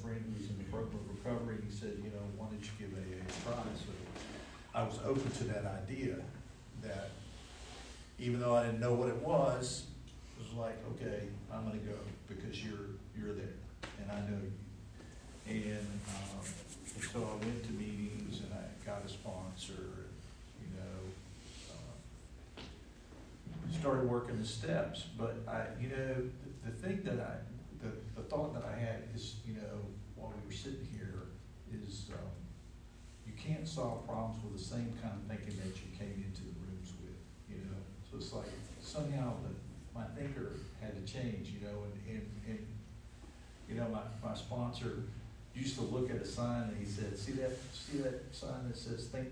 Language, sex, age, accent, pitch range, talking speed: English, male, 50-69, American, 100-120 Hz, 185 wpm